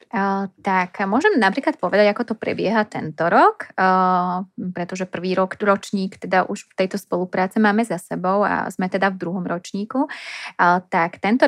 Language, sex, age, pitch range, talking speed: Czech, female, 20-39, 180-210 Hz, 165 wpm